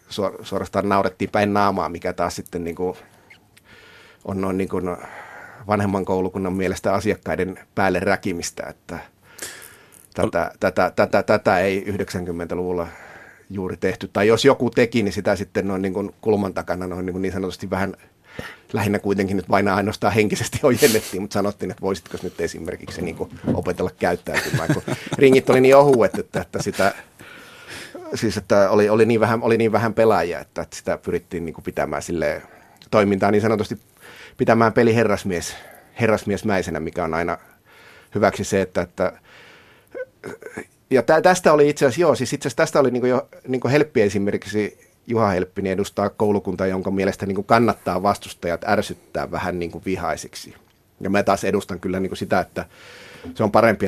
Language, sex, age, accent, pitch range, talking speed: Finnish, male, 30-49, native, 95-110 Hz, 155 wpm